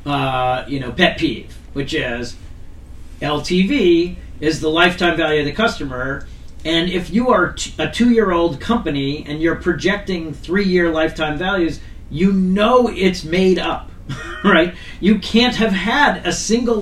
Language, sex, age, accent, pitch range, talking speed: English, male, 40-59, American, 140-190 Hz, 145 wpm